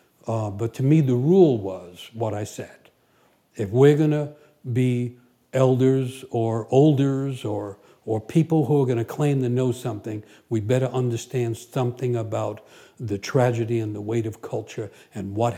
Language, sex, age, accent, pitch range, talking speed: English, male, 60-79, American, 110-130 Hz, 165 wpm